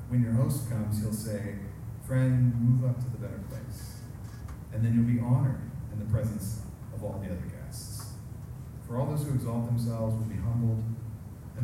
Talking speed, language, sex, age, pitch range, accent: 185 wpm, English, male, 40-59, 110-130 Hz, American